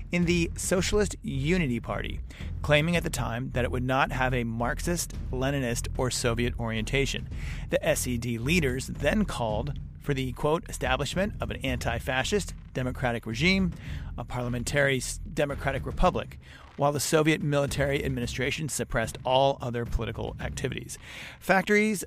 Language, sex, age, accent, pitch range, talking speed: English, male, 40-59, American, 120-150 Hz, 135 wpm